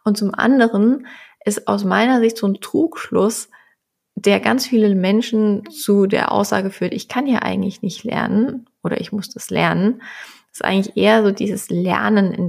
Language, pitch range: German, 190-230 Hz